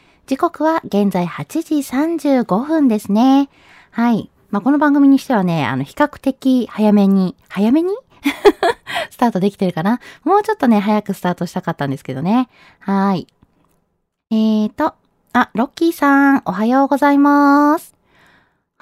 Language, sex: Japanese, female